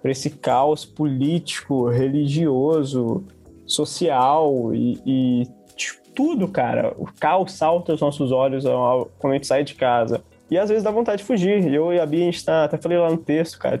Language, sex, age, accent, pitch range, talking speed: Portuguese, male, 20-39, Brazilian, 130-165 Hz, 185 wpm